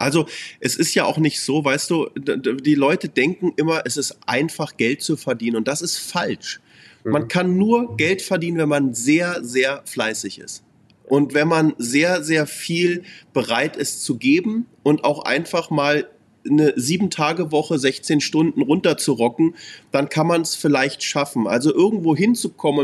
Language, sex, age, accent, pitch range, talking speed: German, male, 30-49, German, 145-185 Hz, 165 wpm